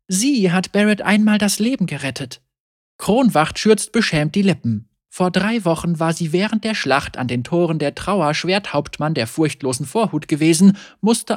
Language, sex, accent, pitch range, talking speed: German, male, German, 150-210 Hz, 165 wpm